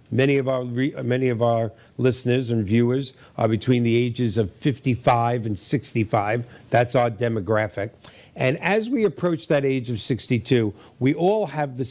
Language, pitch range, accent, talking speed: English, 115-140 Hz, American, 160 wpm